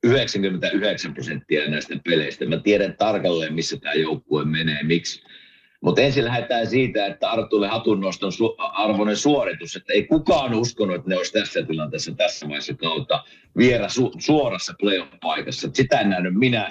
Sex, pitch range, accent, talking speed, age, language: male, 90-125 Hz, native, 155 wpm, 50-69, Finnish